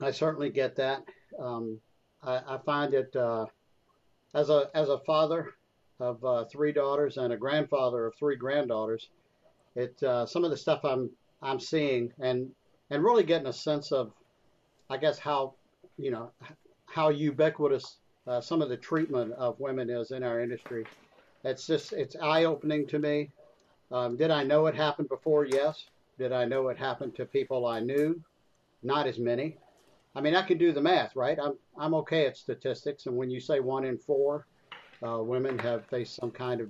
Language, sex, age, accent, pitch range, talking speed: English, male, 50-69, American, 125-150 Hz, 185 wpm